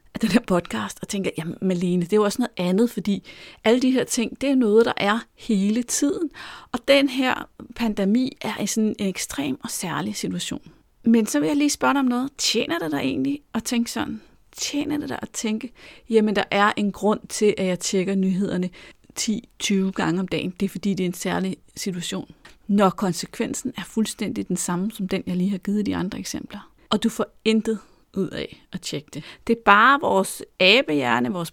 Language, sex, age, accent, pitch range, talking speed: Danish, female, 40-59, native, 195-245 Hz, 215 wpm